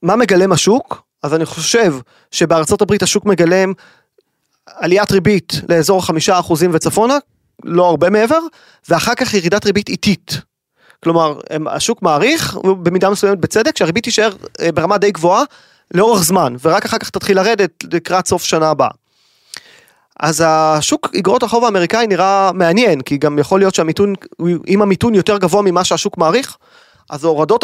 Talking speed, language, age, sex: 145 wpm, Hebrew, 30-49, male